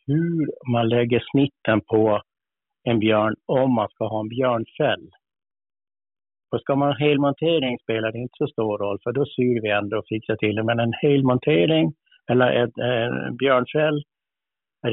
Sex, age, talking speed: male, 60-79, 160 wpm